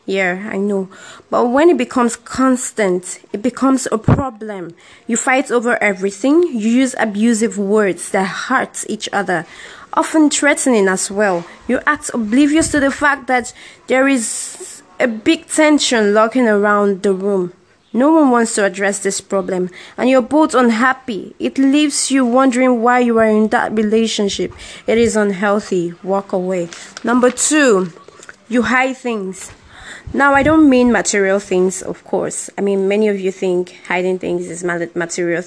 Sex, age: female, 20-39